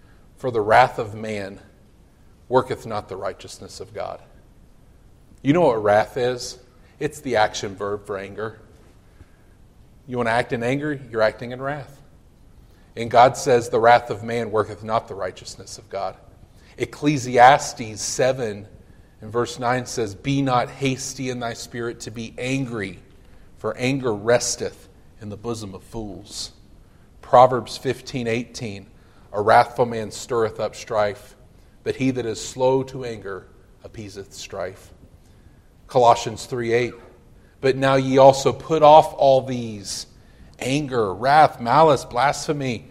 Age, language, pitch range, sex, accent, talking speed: 40-59, English, 105-125 Hz, male, American, 140 wpm